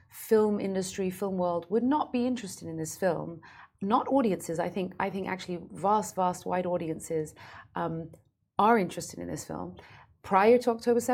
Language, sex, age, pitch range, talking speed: Arabic, female, 30-49, 155-195 Hz, 165 wpm